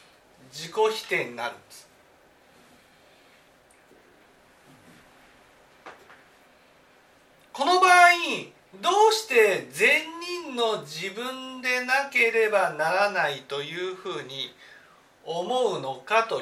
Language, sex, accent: Japanese, male, native